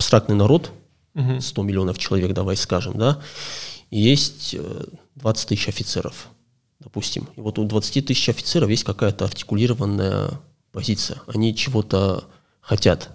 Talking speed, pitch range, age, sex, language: 125 wpm, 100-125 Hz, 20-39, male, Russian